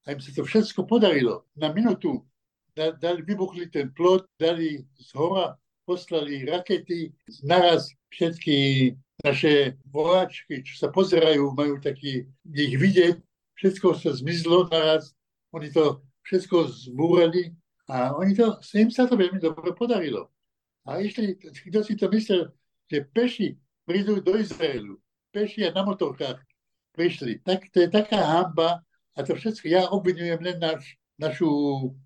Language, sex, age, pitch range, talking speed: Slovak, male, 60-79, 145-185 Hz, 140 wpm